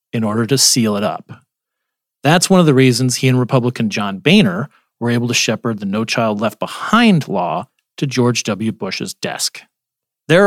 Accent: American